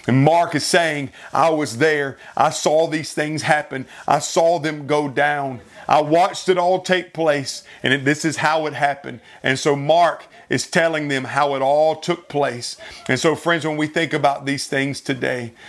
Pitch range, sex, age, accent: 140-170 Hz, male, 40-59, American